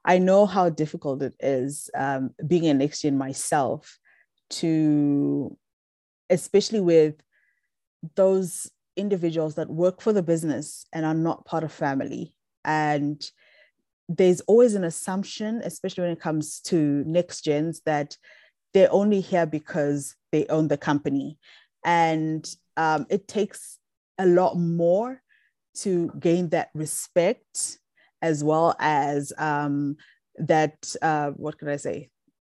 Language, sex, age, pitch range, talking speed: English, female, 20-39, 145-180 Hz, 125 wpm